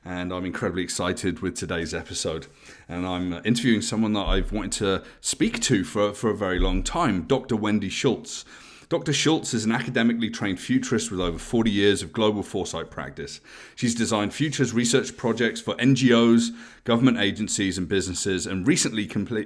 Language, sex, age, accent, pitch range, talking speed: English, male, 30-49, British, 100-120 Hz, 165 wpm